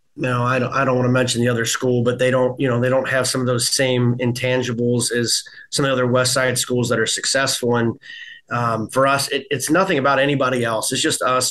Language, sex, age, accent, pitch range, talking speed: English, male, 30-49, American, 120-130 Hz, 250 wpm